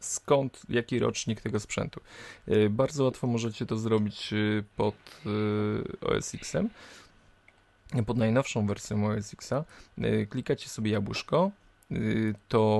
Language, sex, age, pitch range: Polish, male, 20-39, 105-125 Hz